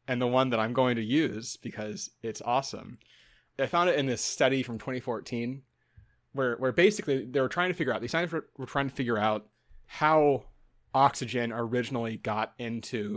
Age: 20-39